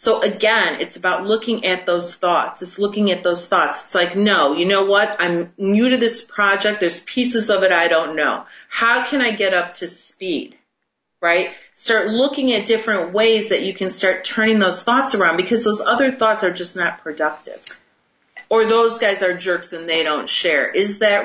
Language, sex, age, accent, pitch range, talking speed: English, female, 30-49, American, 170-230 Hz, 200 wpm